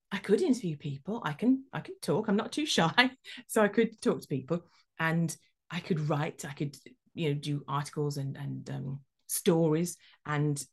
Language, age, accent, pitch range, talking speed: English, 30-49, British, 155-220 Hz, 190 wpm